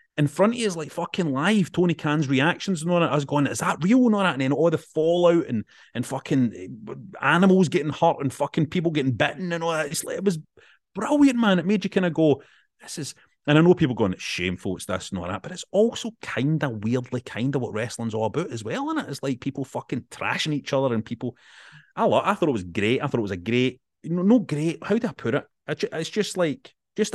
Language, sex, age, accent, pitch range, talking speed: English, male, 30-49, British, 120-180 Hz, 265 wpm